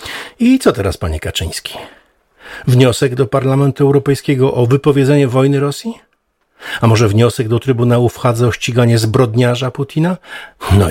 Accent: native